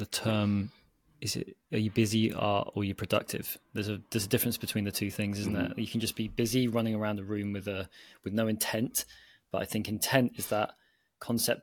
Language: English